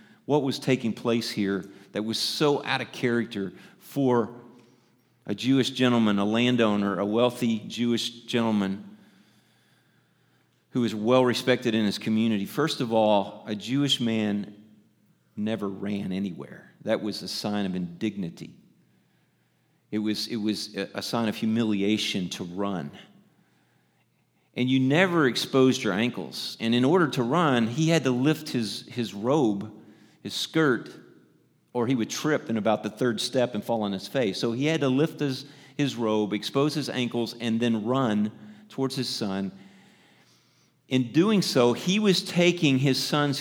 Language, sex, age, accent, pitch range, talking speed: English, male, 40-59, American, 110-140 Hz, 150 wpm